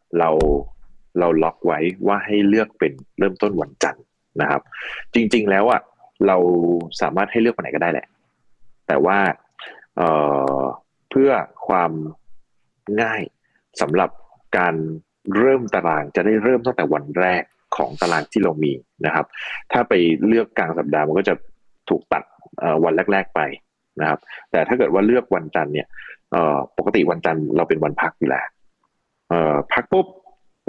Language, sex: Thai, male